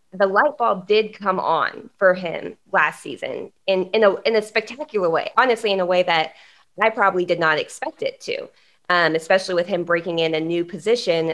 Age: 20-39